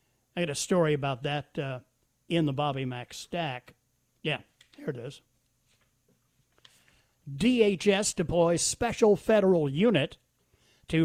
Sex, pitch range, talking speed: male, 145-195 Hz, 120 wpm